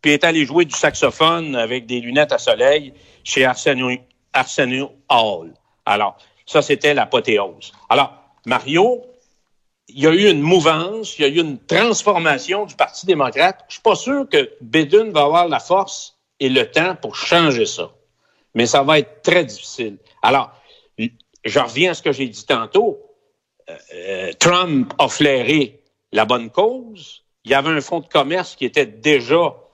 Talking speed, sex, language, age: 170 wpm, male, French, 60-79